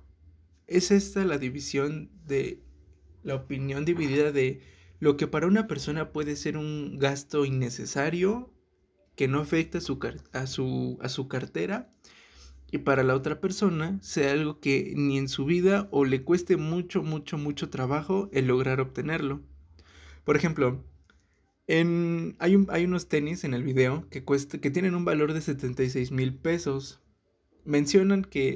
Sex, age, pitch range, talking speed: male, 20-39, 130-170 Hz, 155 wpm